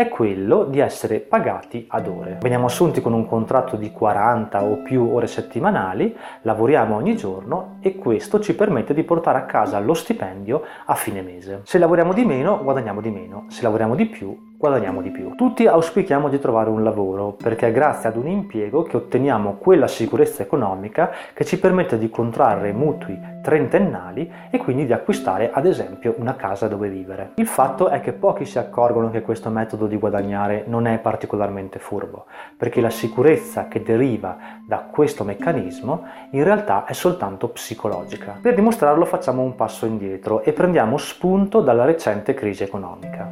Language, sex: Italian, male